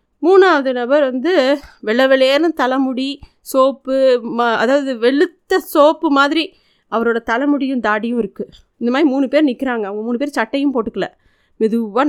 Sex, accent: female, native